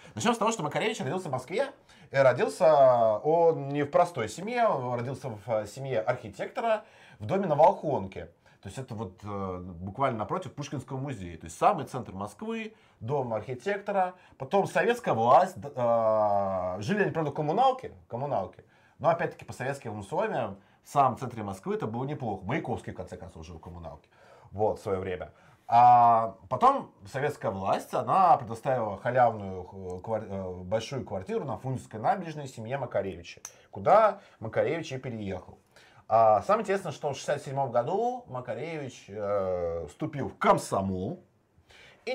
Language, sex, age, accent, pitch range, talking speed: Russian, male, 30-49, native, 100-155 Hz, 145 wpm